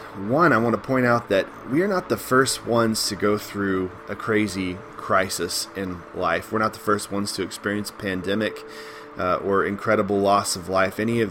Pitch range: 100-120 Hz